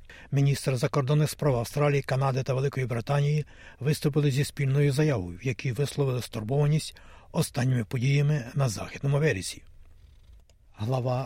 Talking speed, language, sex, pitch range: 115 wpm, Ukrainian, male, 120-140 Hz